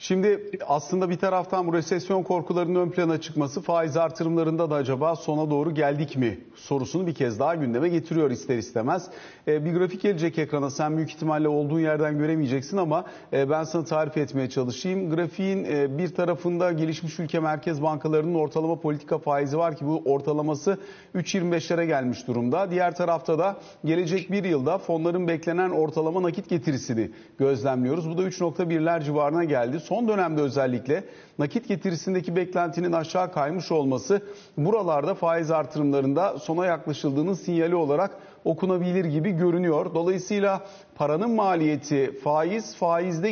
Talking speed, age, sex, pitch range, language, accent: 145 wpm, 40-59, male, 145-180 Hz, Turkish, native